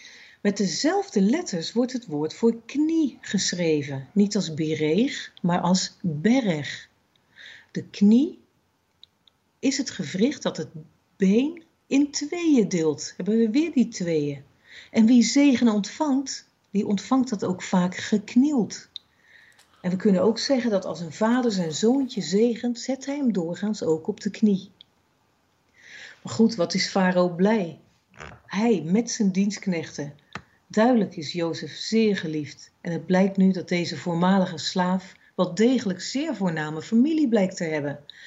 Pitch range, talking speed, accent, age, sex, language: 170-230 Hz, 145 wpm, Dutch, 50-69, female, Dutch